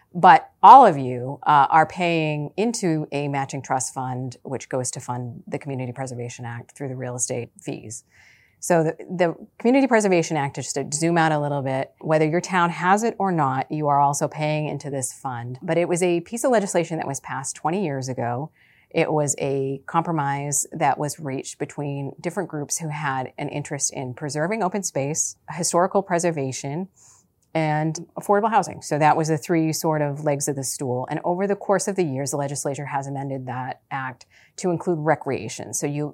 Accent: American